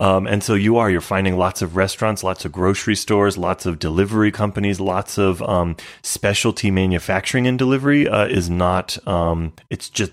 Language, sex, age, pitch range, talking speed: English, male, 30-49, 95-125 Hz, 185 wpm